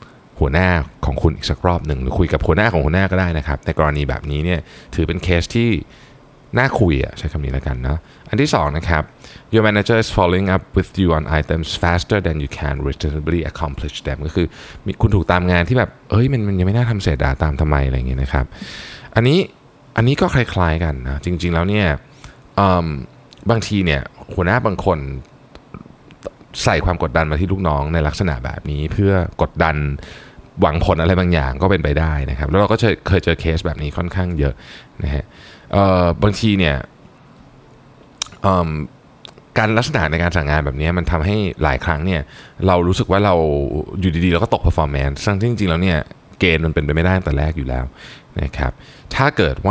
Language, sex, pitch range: Thai, male, 75-100 Hz